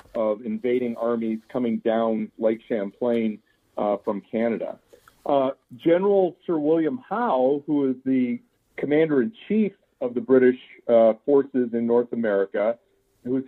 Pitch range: 125-160 Hz